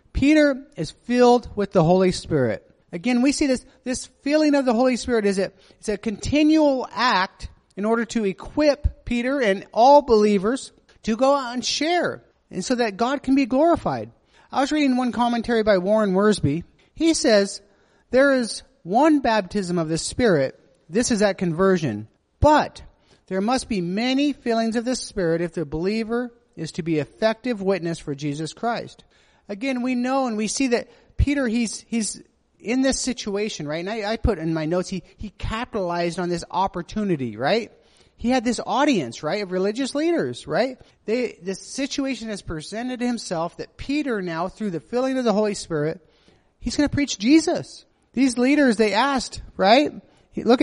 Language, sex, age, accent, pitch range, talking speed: English, male, 40-59, American, 190-265 Hz, 175 wpm